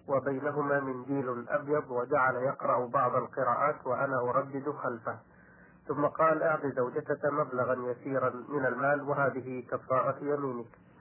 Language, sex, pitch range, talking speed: Arabic, male, 130-150 Hz, 115 wpm